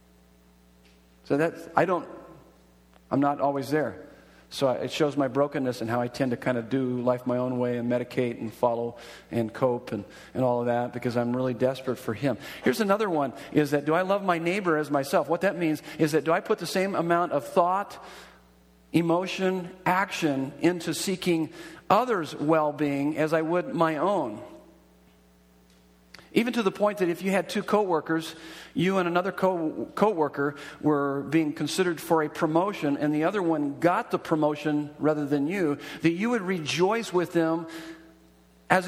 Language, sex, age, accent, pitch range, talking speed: English, male, 40-59, American, 120-165 Hz, 175 wpm